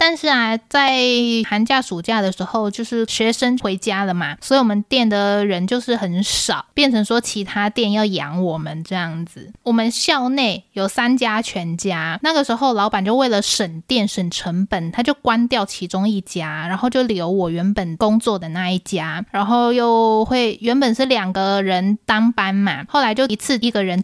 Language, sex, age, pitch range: Chinese, female, 20-39, 195-260 Hz